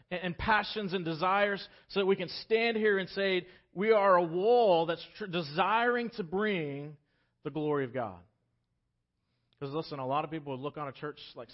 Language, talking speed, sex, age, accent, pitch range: English, 185 wpm, male, 40-59, American, 110-150 Hz